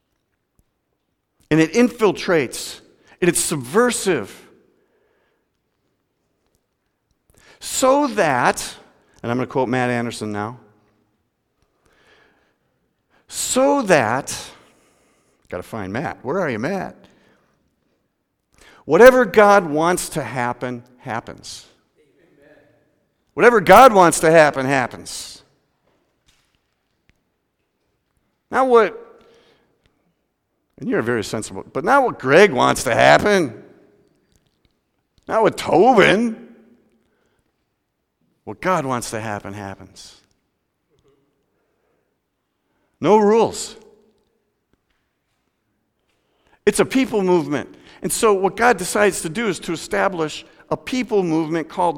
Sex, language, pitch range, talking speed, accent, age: male, English, 140-220 Hz, 90 wpm, American, 50-69